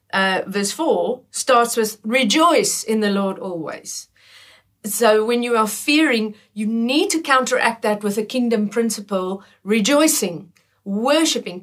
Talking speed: 135 wpm